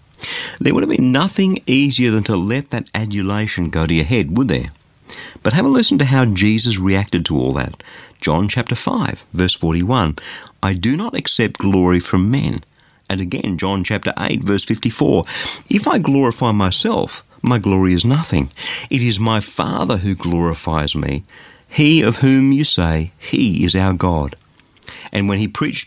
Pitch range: 95-130 Hz